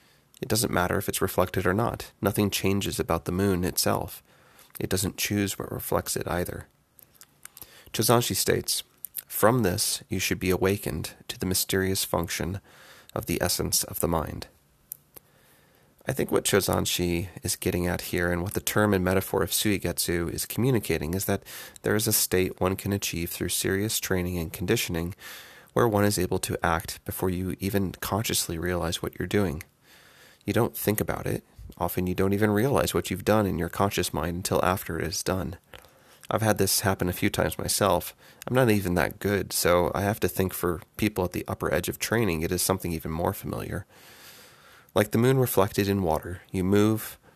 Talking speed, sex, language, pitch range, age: 185 wpm, male, English, 90-105 Hz, 30-49